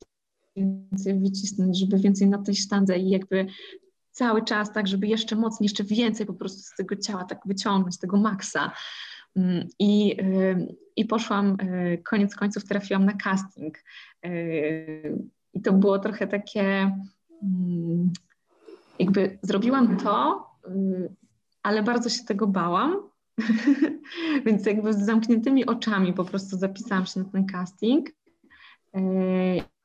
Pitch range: 185-220 Hz